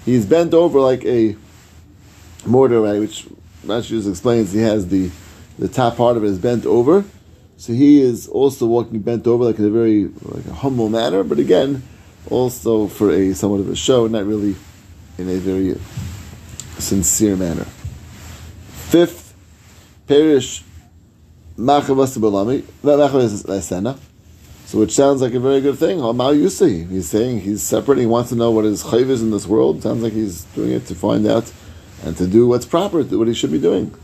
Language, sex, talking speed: English, male, 175 wpm